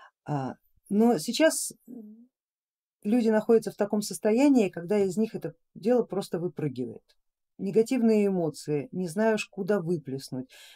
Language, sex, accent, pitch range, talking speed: Russian, female, native, 155-215 Hz, 110 wpm